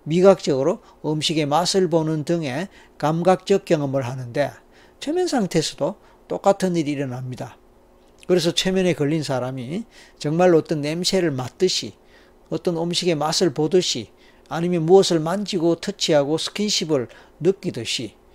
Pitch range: 135-180 Hz